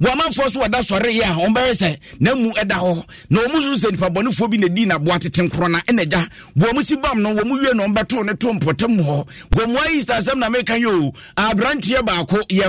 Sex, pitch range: male, 175-230 Hz